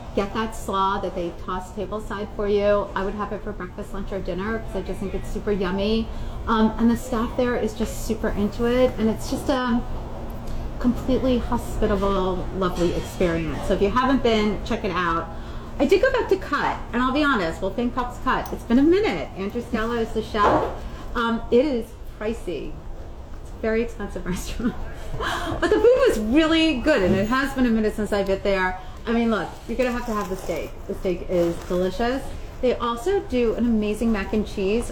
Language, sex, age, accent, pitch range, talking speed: English, female, 30-49, American, 200-245 Hz, 210 wpm